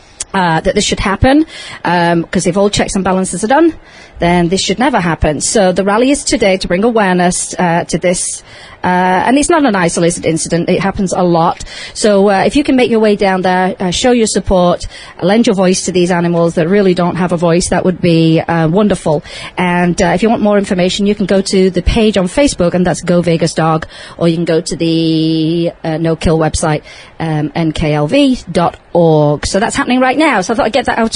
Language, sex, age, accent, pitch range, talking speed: English, female, 40-59, British, 170-220 Hz, 225 wpm